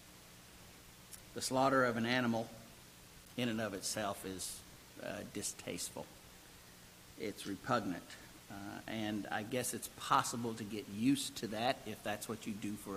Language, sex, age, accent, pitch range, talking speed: English, male, 50-69, American, 100-120 Hz, 145 wpm